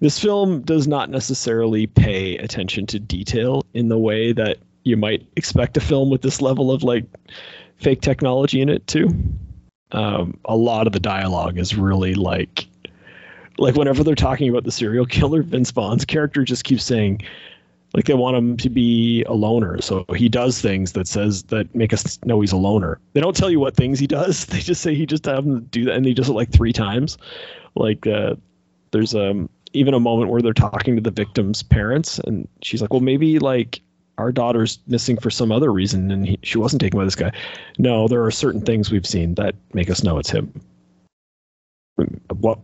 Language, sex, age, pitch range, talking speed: English, male, 30-49, 105-135 Hz, 205 wpm